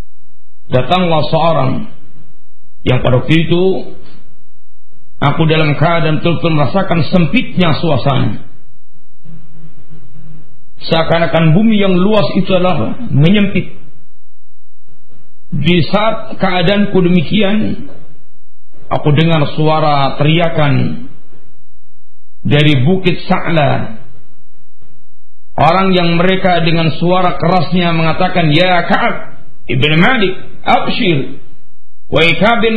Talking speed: 80 wpm